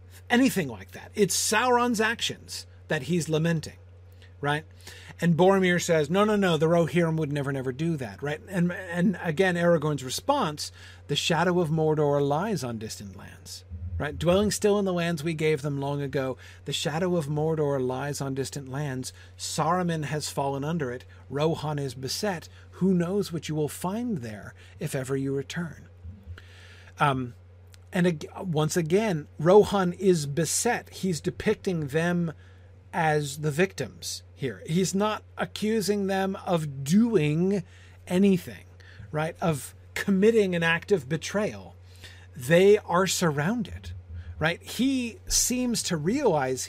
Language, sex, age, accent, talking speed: English, male, 40-59, American, 145 wpm